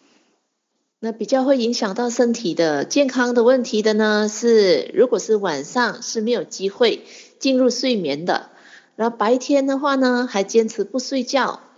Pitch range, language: 180-240 Hz, Chinese